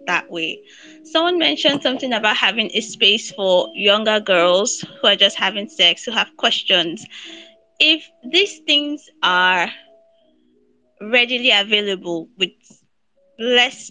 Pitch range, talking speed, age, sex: 200-310 Hz, 120 wpm, 20-39, female